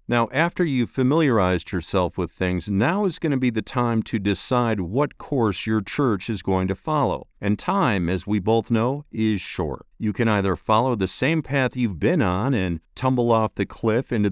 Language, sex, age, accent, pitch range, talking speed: English, male, 50-69, American, 95-130 Hz, 200 wpm